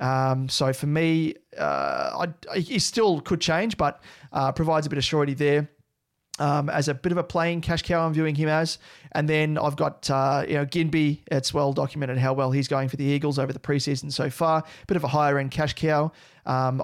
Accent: Australian